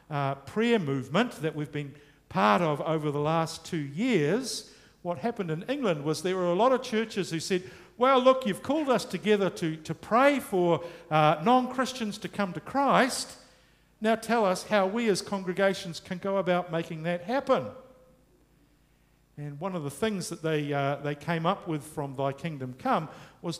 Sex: male